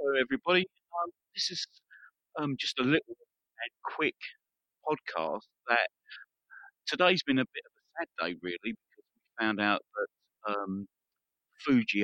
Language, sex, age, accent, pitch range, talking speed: English, male, 40-59, British, 110-135 Hz, 145 wpm